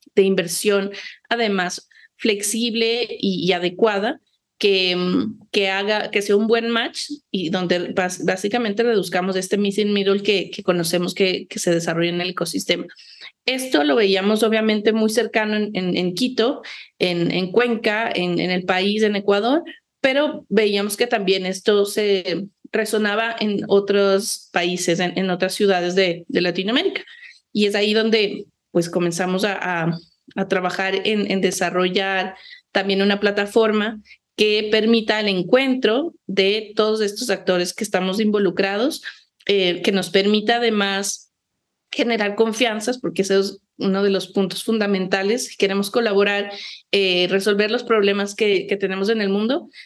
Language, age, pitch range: Spanish, 30-49, 190-225 Hz